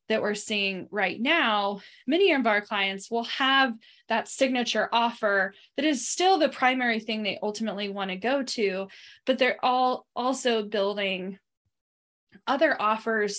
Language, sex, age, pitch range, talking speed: English, female, 10-29, 200-235 Hz, 150 wpm